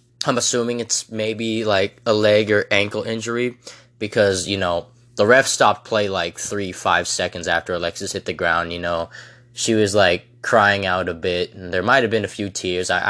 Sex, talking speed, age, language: male, 200 wpm, 20-39, English